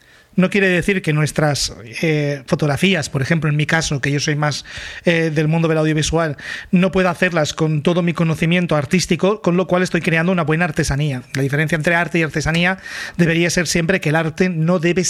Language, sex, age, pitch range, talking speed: Spanish, male, 30-49, 155-185 Hz, 205 wpm